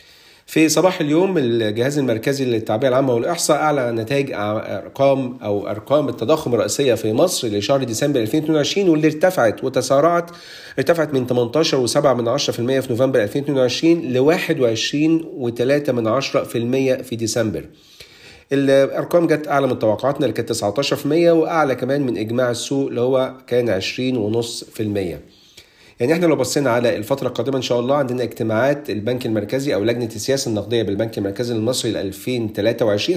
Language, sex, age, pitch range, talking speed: Arabic, male, 40-59, 115-145 Hz, 135 wpm